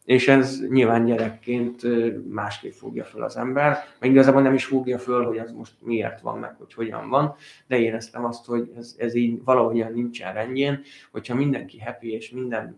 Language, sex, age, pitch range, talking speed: Hungarian, male, 20-39, 115-130 Hz, 190 wpm